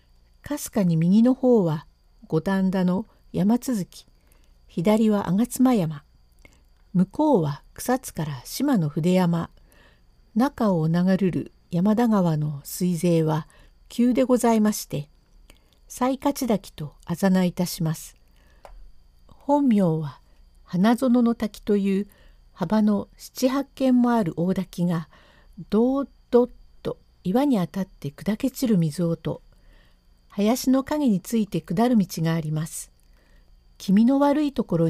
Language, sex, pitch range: Japanese, female, 150-235 Hz